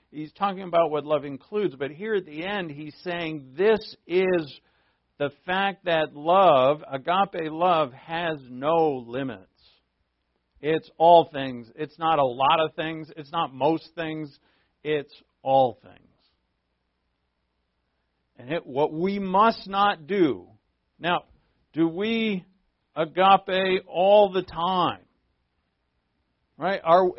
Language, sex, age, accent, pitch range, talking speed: English, male, 50-69, American, 115-185 Hz, 125 wpm